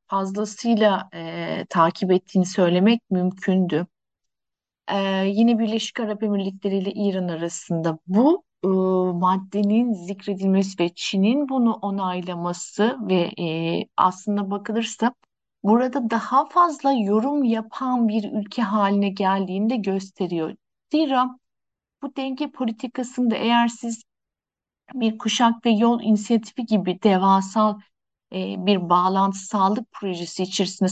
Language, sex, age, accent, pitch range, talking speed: Turkish, female, 60-79, native, 185-230 Hz, 105 wpm